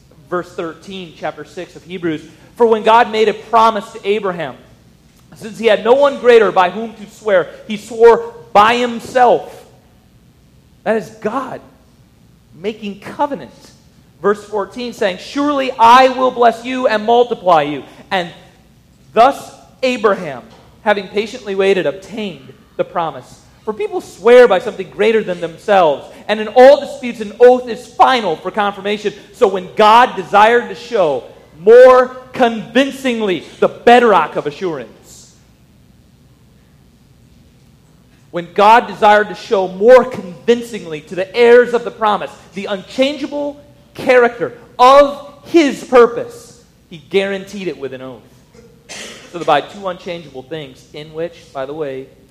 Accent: American